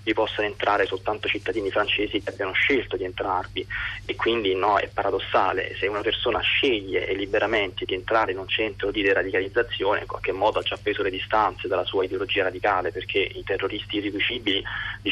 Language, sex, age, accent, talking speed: Italian, male, 20-39, native, 180 wpm